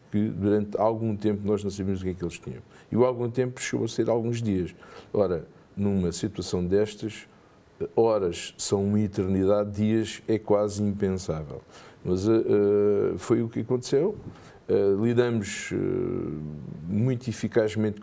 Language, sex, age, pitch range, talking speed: Portuguese, male, 50-69, 90-110 Hz, 155 wpm